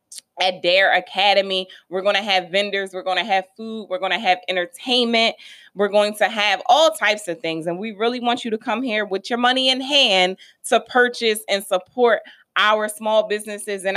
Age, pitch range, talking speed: 20-39, 175-225 Hz, 200 wpm